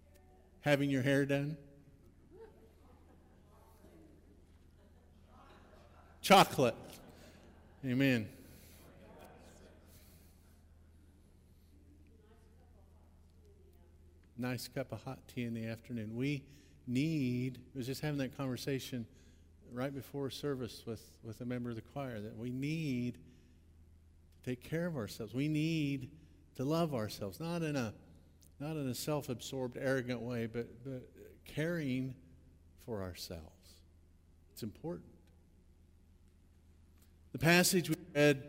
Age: 50-69